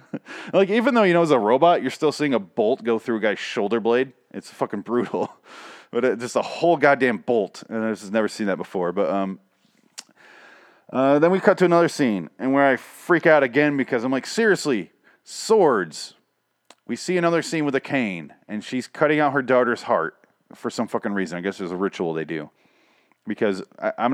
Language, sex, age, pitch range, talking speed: English, male, 30-49, 110-160 Hz, 200 wpm